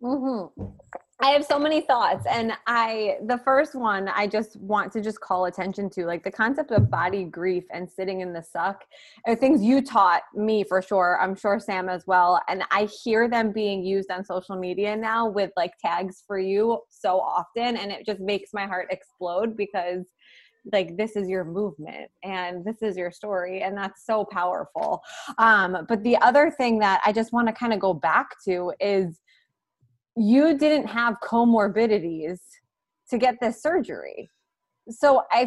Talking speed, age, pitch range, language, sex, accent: 180 wpm, 20-39, 190-250 Hz, English, female, American